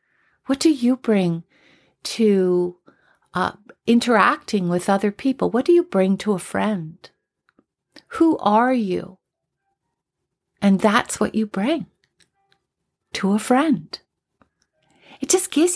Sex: female